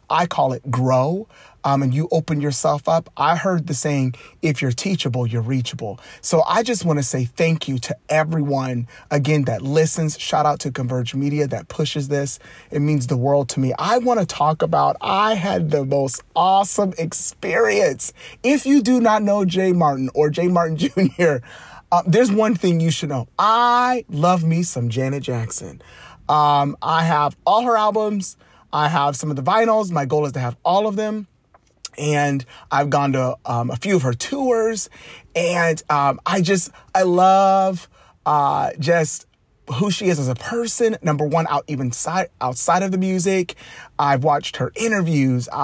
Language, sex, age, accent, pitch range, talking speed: English, male, 30-49, American, 135-180 Hz, 180 wpm